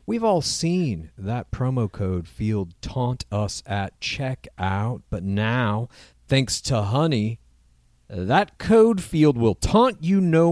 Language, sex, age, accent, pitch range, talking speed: English, male, 40-59, American, 110-180 Hz, 130 wpm